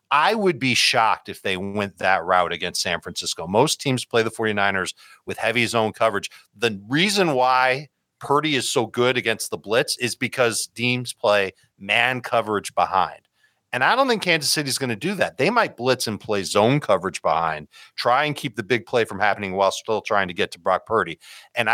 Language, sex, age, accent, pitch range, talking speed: English, male, 40-59, American, 110-140 Hz, 205 wpm